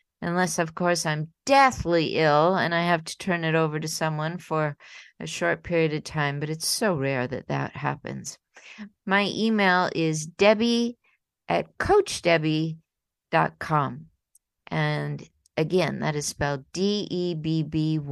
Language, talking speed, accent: English, 140 wpm, American